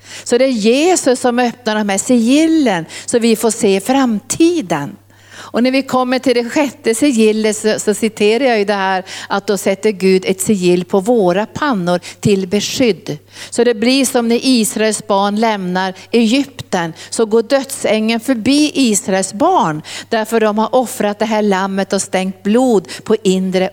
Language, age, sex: Swedish, 50-69, female